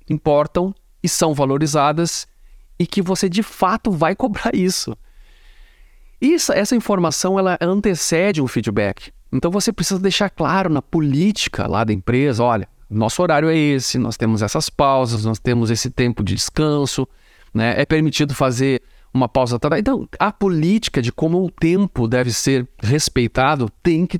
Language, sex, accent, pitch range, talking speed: Portuguese, male, Brazilian, 120-175 Hz, 155 wpm